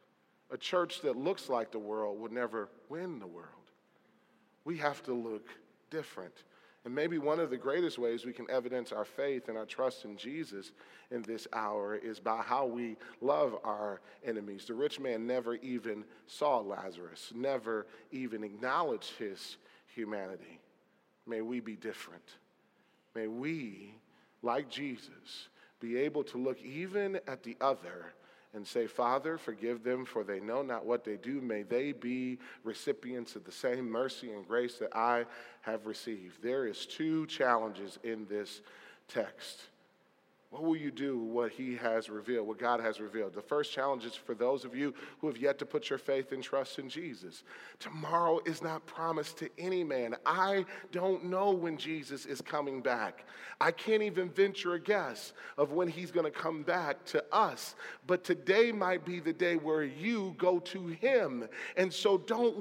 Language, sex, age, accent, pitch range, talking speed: English, male, 40-59, American, 115-180 Hz, 175 wpm